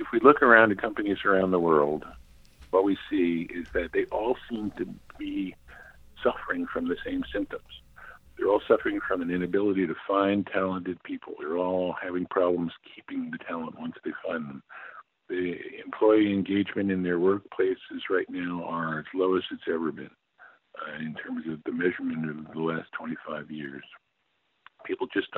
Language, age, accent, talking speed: English, 50-69, American, 175 wpm